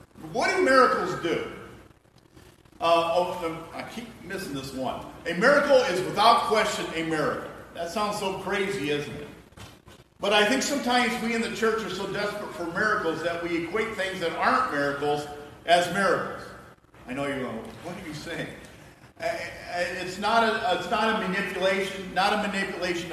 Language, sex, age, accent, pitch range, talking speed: English, male, 50-69, American, 175-220 Hz, 160 wpm